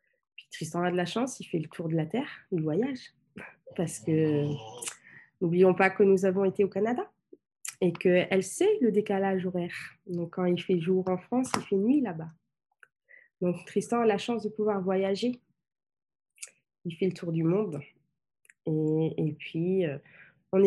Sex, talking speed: female, 170 wpm